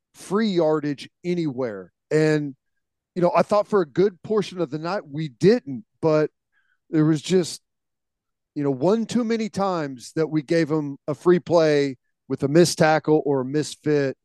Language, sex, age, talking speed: English, male, 40-59, 175 wpm